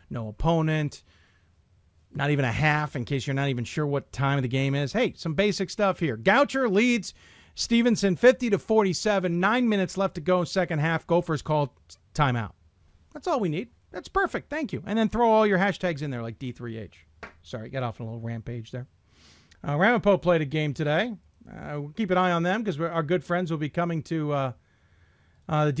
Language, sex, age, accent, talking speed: English, male, 40-59, American, 205 wpm